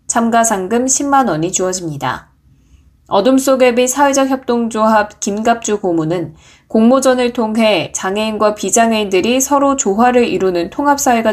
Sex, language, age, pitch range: female, Korean, 20-39, 180-235 Hz